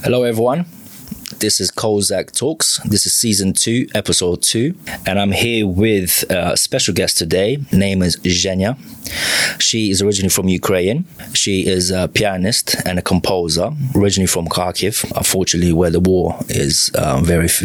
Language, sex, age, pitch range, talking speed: Ukrainian, male, 20-39, 95-115 Hz, 155 wpm